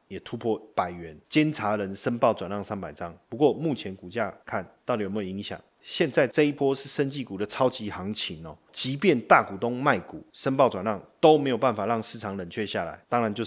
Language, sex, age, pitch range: Chinese, male, 30-49, 100-125 Hz